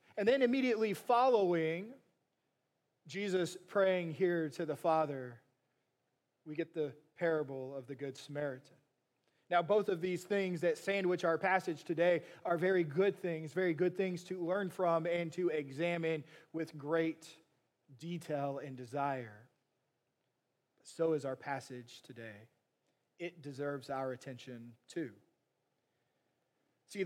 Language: English